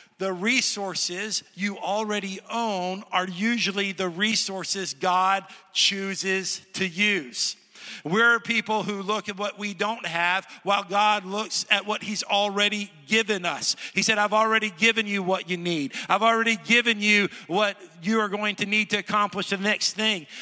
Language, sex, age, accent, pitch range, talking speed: English, male, 50-69, American, 195-225 Hz, 160 wpm